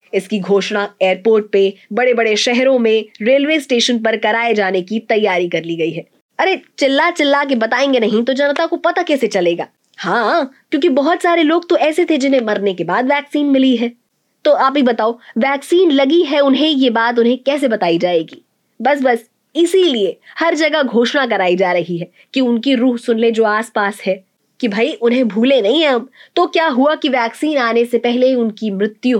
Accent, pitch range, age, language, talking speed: native, 210-285 Hz, 20-39, Hindi, 200 wpm